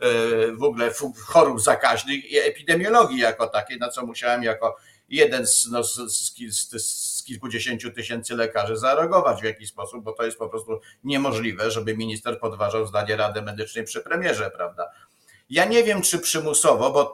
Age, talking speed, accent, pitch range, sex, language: 50-69, 155 wpm, native, 115-165 Hz, male, Polish